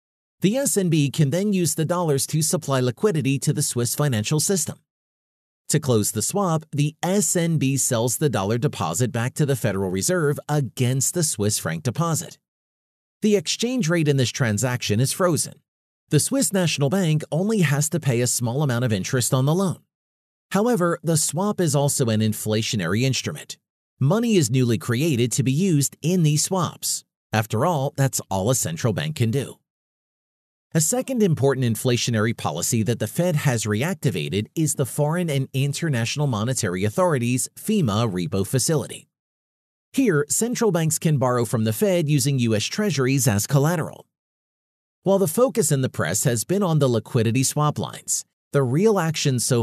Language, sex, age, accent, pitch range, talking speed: English, male, 30-49, American, 120-165 Hz, 165 wpm